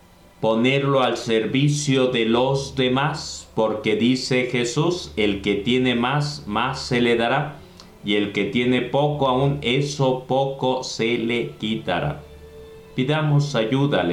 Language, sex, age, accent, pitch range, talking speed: Spanish, male, 40-59, Mexican, 105-130 Hz, 130 wpm